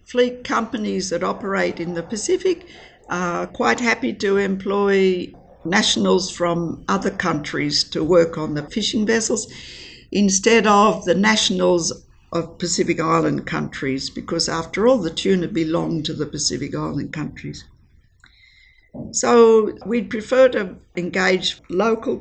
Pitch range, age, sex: 175-235 Hz, 60-79, female